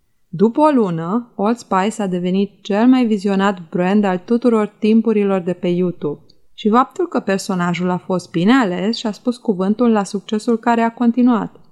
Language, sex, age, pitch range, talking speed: Romanian, female, 20-39, 185-220 Hz, 175 wpm